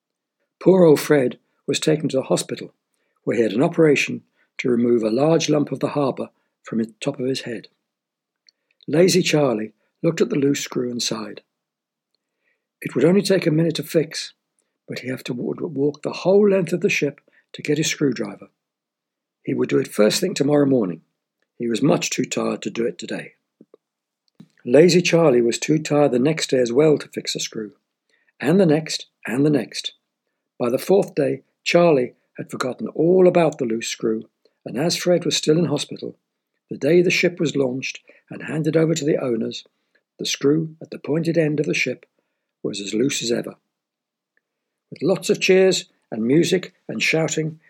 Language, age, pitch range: English, 60-79, 130-170 Hz